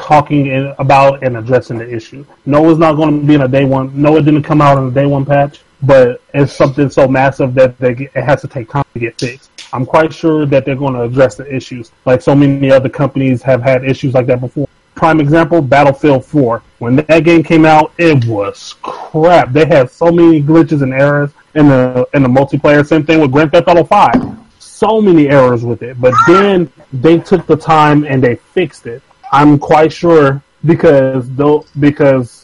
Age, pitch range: 30-49, 135-160 Hz